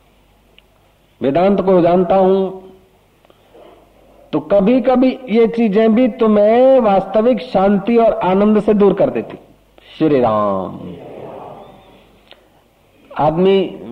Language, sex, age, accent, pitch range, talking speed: Hindi, male, 50-69, native, 155-195 Hz, 90 wpm